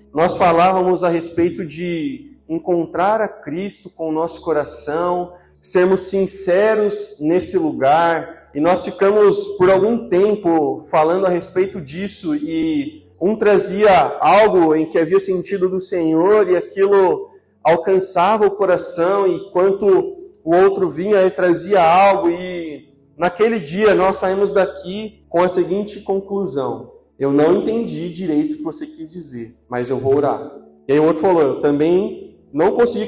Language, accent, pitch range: Portuguese, Brazilian, 160-205 Hz